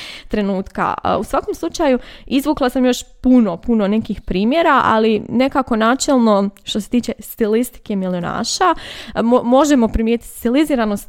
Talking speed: 125 wpm